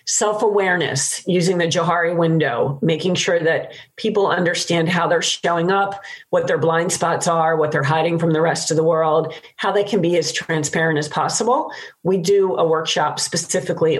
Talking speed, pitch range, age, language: 175 wpm, 155-180 Hz, 40-59, English